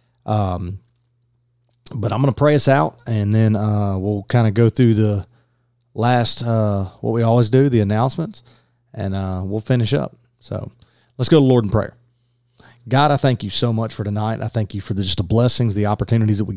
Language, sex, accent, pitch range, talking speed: English, male, American, 105-125 Hz, 205 wpm